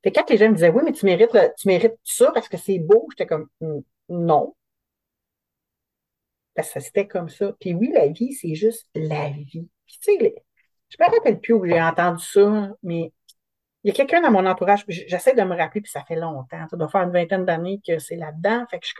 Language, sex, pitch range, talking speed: French, female, 170-230 Hz, 235 wpm